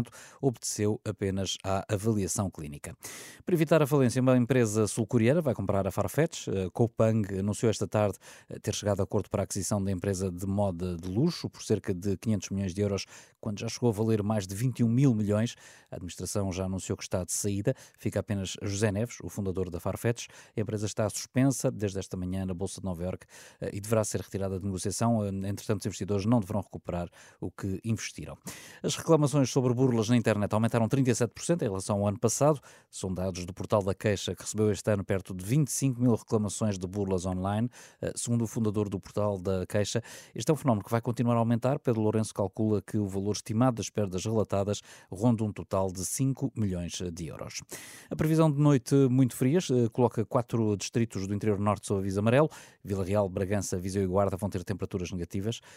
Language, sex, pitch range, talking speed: Portuguese, male, 95-120 Hz, 200 wpm